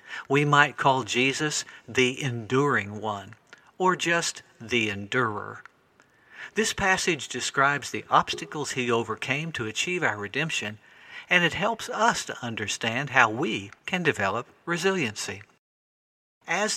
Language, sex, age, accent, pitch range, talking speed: English, male, 60-79, American, 115-155 Hz, 120 wpm